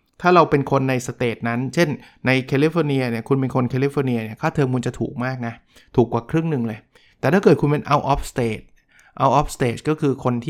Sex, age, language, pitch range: male, 20-39, Thai, 120-145 Hz